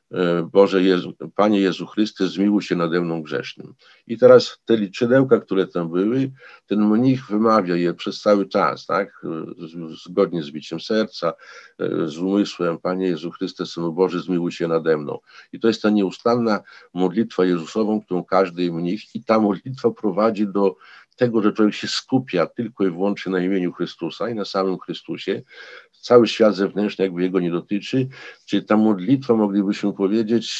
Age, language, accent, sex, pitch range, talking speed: 50-69, Polish, native, male, 90-110 Hz, 160 wpm